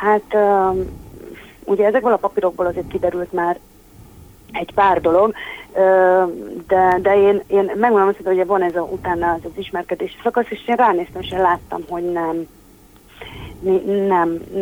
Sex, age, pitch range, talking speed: female, 30-49, 175-195 Hz, 145 wpm